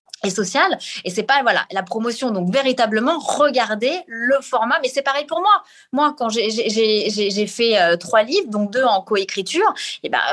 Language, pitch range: French, 200-260 Hz